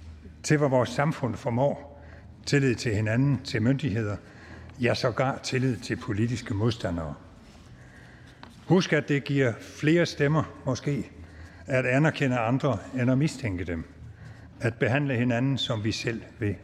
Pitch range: 110-145 Hz